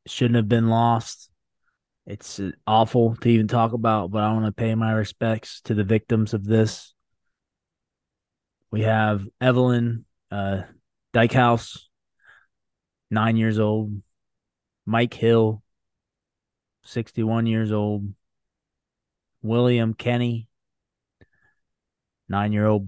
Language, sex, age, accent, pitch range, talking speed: English, male, 20-39, American, 95-115 Hz, 100 wpm